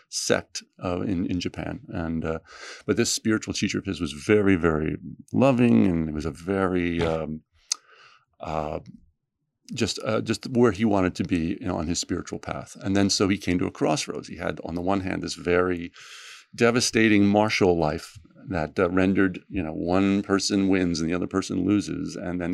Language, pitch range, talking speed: English, 85-105 Hz, 190 wpm